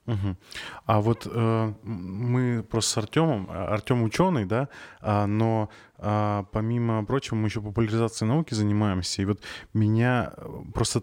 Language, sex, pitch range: Russian, male, 100-115 Hz